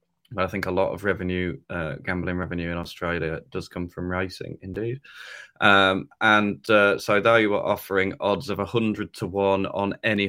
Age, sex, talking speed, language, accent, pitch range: 20-39, male, 180 wpm, English, British, 90-110 Hz